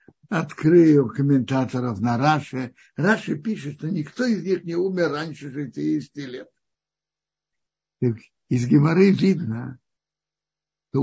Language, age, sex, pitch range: Russian, 60-79, male, 135-185 Hz